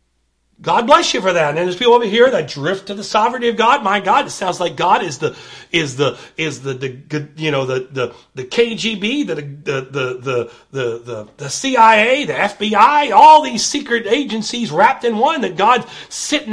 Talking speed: 200 wpm